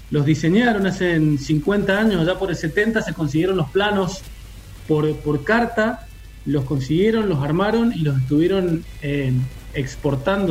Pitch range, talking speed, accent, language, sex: 155-200 Hz, 145 wpm, Argentinian, Spanish, male